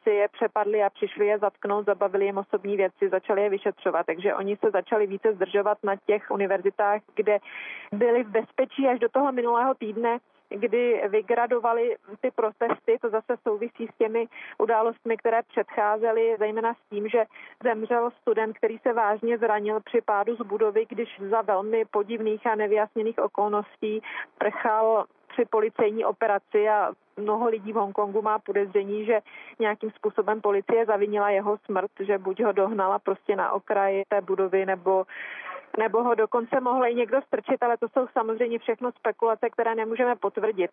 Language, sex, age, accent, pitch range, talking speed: Czech, female, 40-59, native, 205-235 Hz, 160 wpm